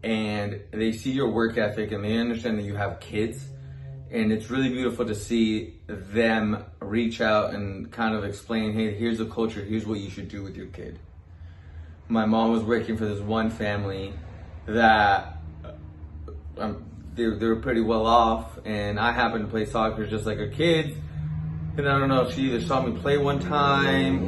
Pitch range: 95-130 Hz